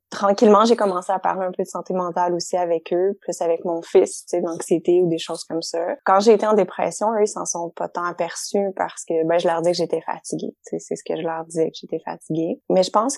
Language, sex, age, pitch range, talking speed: French, female, 20-39, 165-190 Hz, 275 wpm